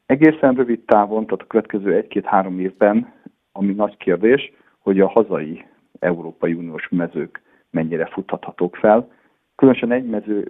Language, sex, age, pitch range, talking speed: Hungarian, male, 50-69, 90-105 Hz, 145 wpm